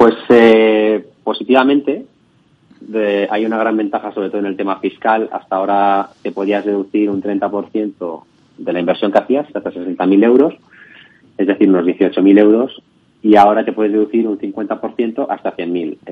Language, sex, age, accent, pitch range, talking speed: Spanish, male, 30-49, Spanish, 95-110 Hz, 160 wpm